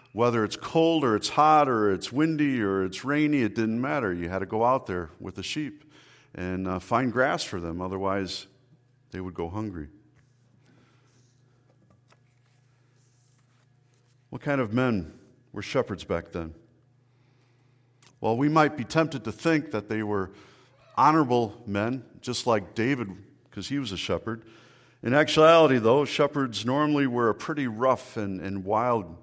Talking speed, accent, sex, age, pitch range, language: 155 wpm, American, male, 50-69, 105-130 Hz, English